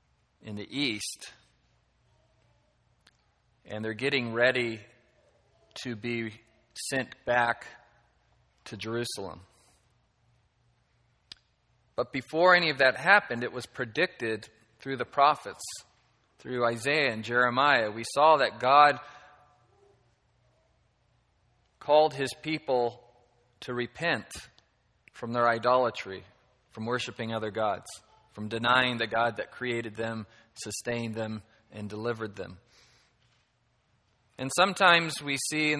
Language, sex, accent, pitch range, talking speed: English, male, American, 115-125 Hz, 105 wpm